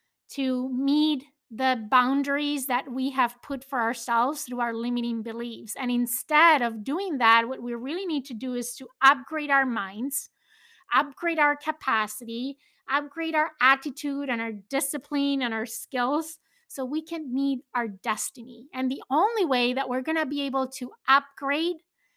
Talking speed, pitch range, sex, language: 160 wpm, 240-290 Hz, female, English